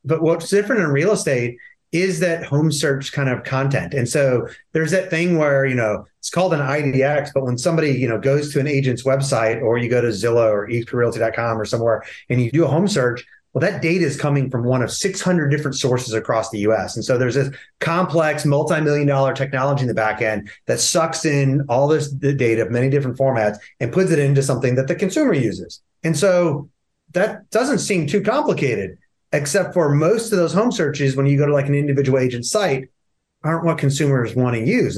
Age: 30-49